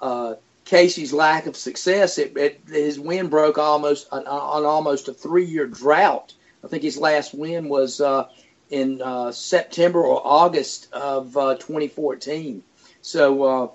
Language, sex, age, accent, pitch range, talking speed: English, male, 50-69, American, 140-165 Hz, 140 wpm